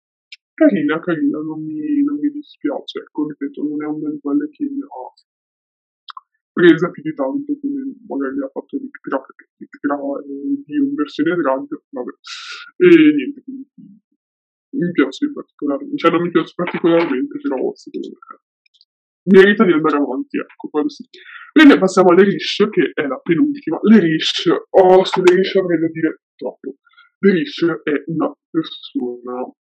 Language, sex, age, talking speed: Italian, female, 20-39, 160 wpm